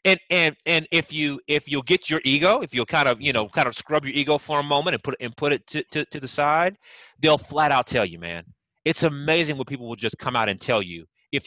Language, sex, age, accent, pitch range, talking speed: English, male, 30-49, American, 110-150 Hz, 275 wpm